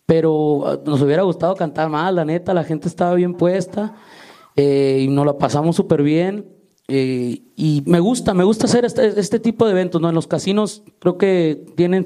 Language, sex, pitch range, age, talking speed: Spanish, male, 155-205 Hz, 30-49, 195 wpm